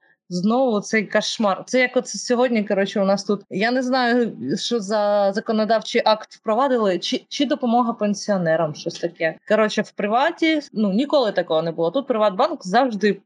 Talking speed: 165 wpm